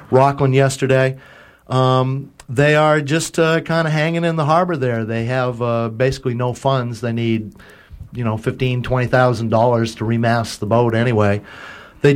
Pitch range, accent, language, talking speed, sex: 115-145 Hz, American, English, 170 wpm, male